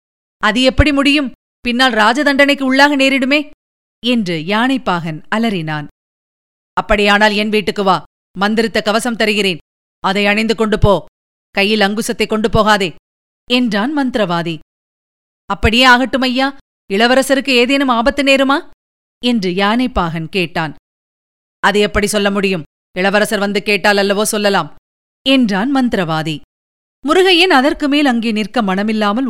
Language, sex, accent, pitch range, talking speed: Tamil, female, native, 195-260 Hz, 110 wpm